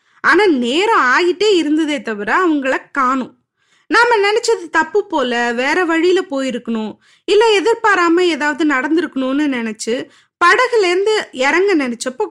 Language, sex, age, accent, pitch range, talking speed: Tamil, female, 20-39, native, 265-385 Hz, 110 wpm